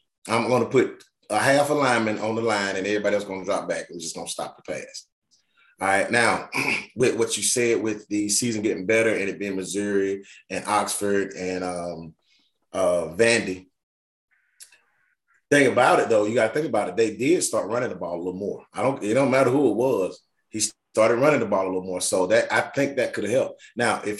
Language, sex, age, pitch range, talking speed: English, male, 30-49, 95-115 Hz, 220 wpm